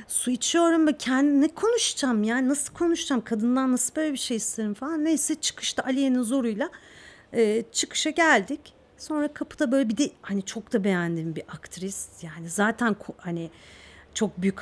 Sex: female